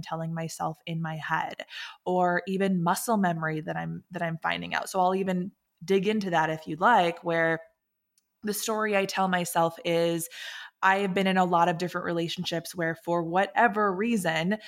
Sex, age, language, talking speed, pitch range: female, 20-39, English, 180 wpm, 170-195 Hz